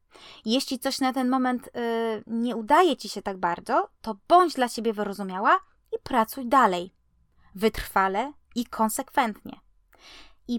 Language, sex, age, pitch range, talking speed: Polish, female, 20-39, 210-275 Hz, 130 wpm